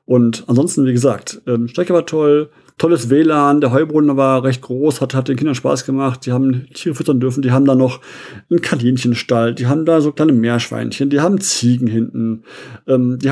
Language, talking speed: German, 195 wpm